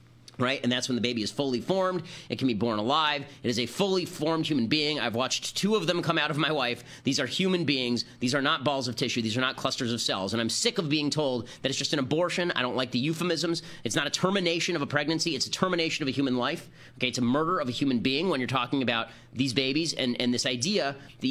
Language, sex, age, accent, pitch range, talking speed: English, male, 30-49, American, 130-180 Hz, 270 wpm